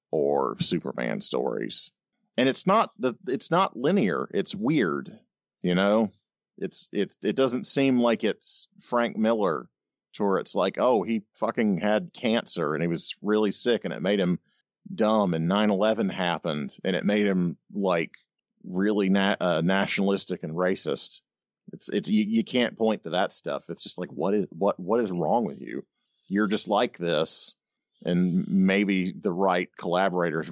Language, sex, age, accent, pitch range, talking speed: English, male, 40-59, American, 90-115 Hz, 165 wpm